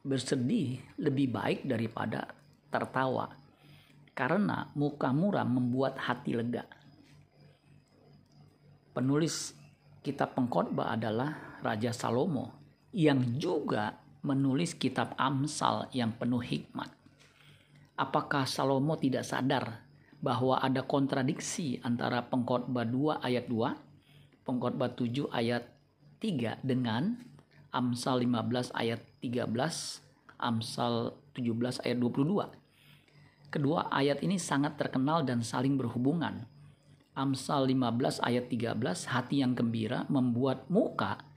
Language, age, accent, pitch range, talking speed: Indonesian, 50-69, native, 125-145 Hz, 95 wpm